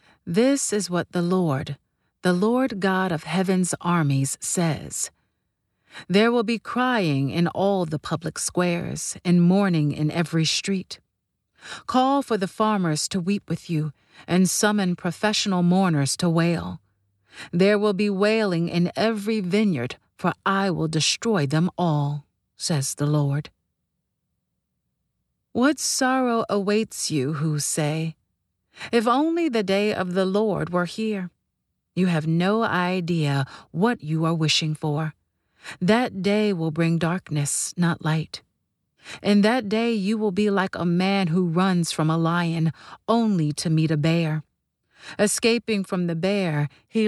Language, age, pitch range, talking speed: English, 40-59, 155-205 Hz, 140 wpm